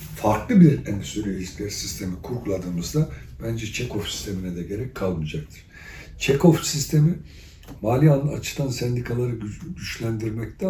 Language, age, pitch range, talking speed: Turkish, 60-79, 95-125 Hz, 100 wpm